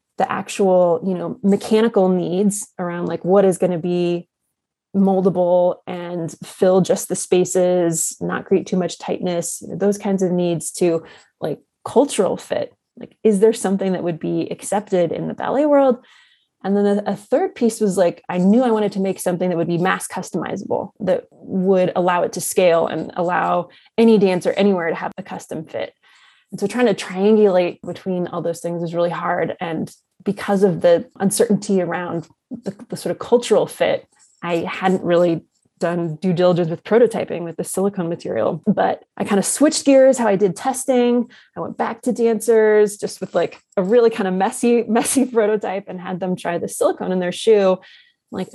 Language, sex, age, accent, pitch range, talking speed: English, female, 20-39, American, 175-225 Hz, 185 wpm